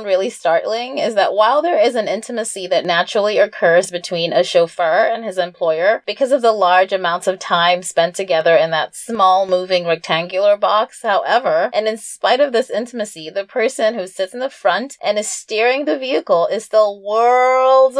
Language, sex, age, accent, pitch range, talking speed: English, female, 20-39, American, 185-245 Hz, 185 wpm